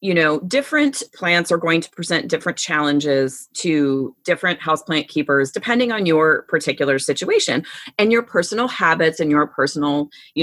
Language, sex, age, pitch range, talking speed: English, female, 30-49, 150-215 Hz, 160 wpm